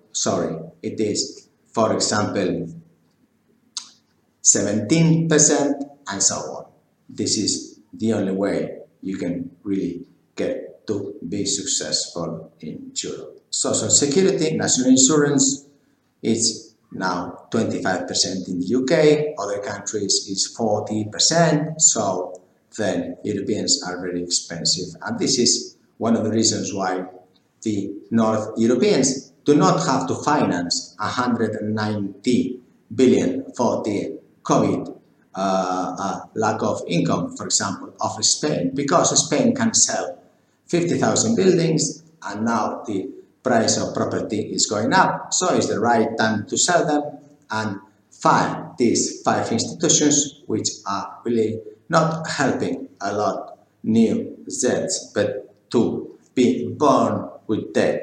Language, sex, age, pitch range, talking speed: English, male, 50-69, 100-155 Hz, 125 wpm